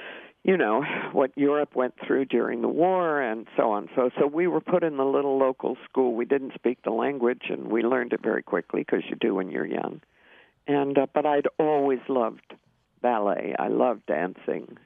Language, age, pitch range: English, 60-79, 130-170 Hz